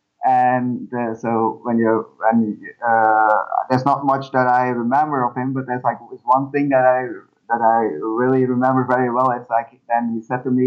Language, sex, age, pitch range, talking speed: English, male, 20-39, 120-140 Hz, 195 wpm